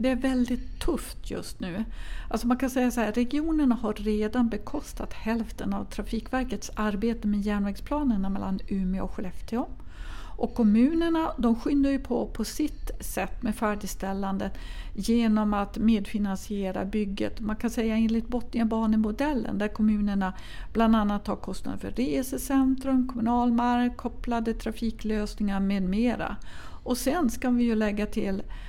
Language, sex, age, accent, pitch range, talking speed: Swedish, female, 50-69, native, 205-240 Hz, 135 wpm